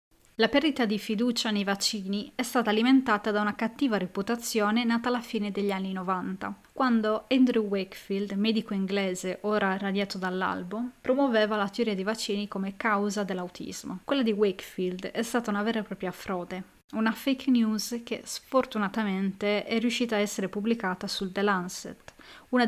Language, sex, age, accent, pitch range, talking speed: Italian, female, 20-39, native, 200-235 Hz, 155 wpm